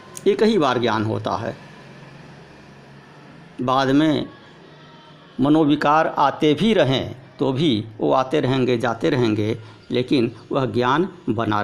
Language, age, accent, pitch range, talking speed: Hindi, 60-79, native, 125-175 Hz, 120 wpm